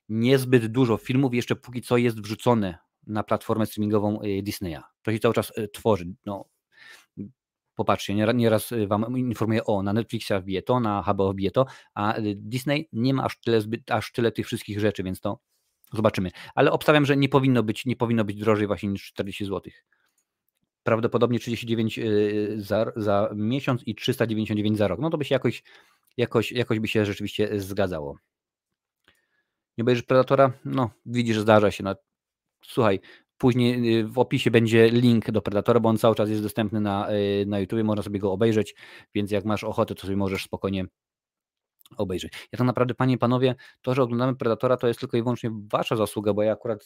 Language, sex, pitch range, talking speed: Polish, male, 105-120 Hz, 175 wpm